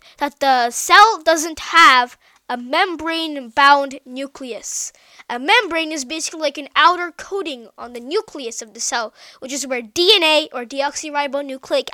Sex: female